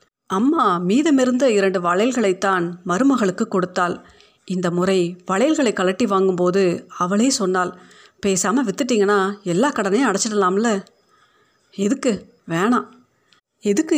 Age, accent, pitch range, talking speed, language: 30-49, native, 185-245 Hz, 90 wpm, Tamil